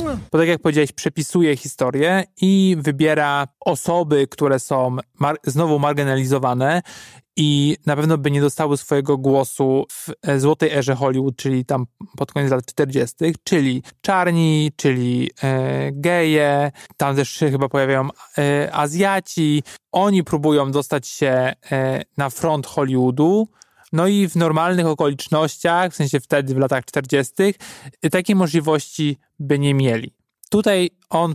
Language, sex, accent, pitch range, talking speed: Polish, male, native, 135-165 Hz, 125 wpm